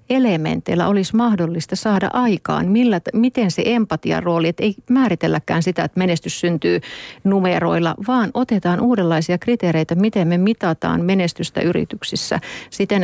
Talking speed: 125 wpm